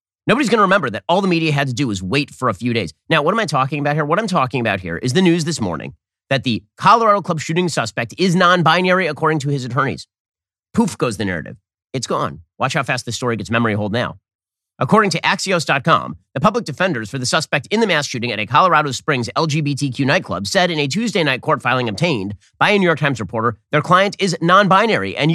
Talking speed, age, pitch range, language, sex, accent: 235 wpm, 30-49, 115-170 Hz, English, male, American